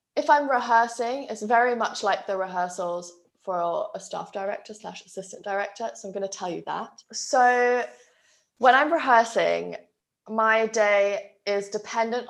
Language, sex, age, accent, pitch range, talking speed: English, female, 20-39, British, 190-230 Hz, 150 wpm